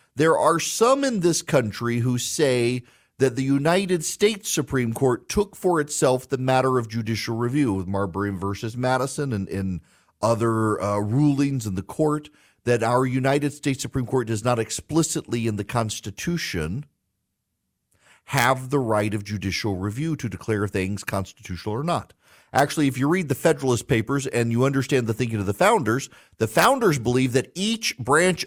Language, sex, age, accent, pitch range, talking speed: English, male, 40-59, American, 125-170 Hz, 165 wpm